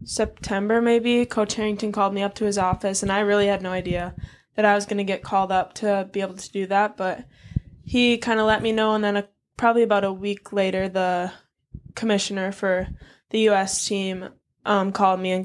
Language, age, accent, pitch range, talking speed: English, 10-29, American, 185-205 Hz, 210 wpm